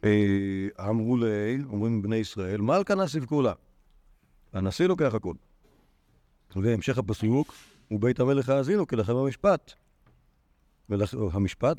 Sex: male